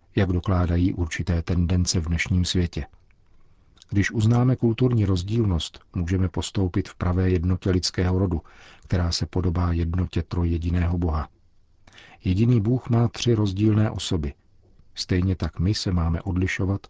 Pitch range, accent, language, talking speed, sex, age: 85-100 Hz, native, Czech, 130 wpm, male, 50-69